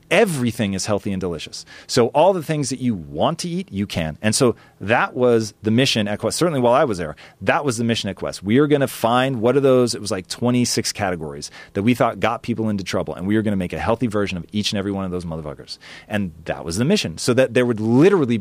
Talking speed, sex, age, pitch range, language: 265 wpm, male, 30-49, 100-135 Hz, English